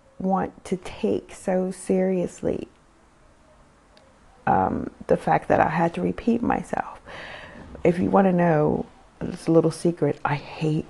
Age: 40-59